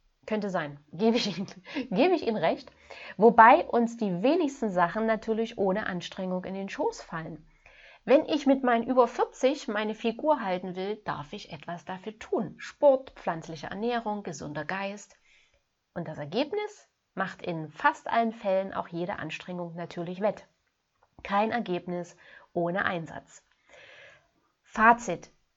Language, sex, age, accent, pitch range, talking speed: German, female, 30-49, German, 185-240 Hz, 140 wpm